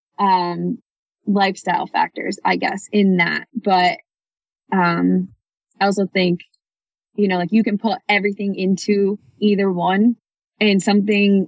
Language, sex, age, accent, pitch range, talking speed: English, female, 10-29, American, 175-190 Hz, 125 wpm